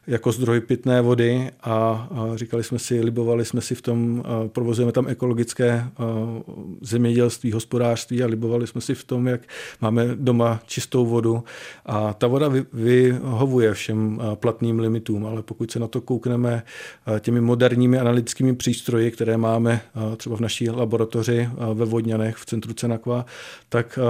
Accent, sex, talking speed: native, male, 145 wpm